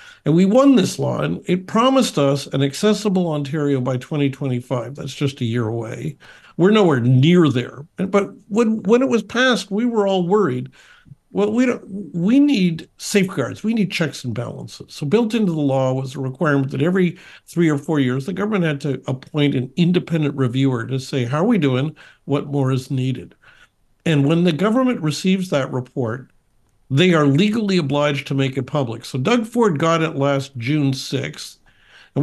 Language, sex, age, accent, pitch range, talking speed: English, male, 50-69, American, 135-195 Hz, 185 wpm